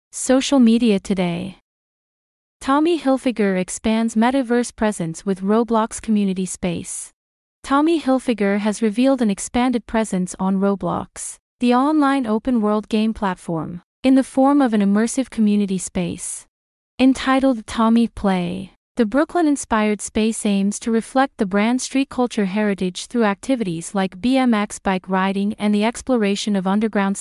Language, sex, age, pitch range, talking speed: English, female, 30-49, 200-245 Hz, 130 wpm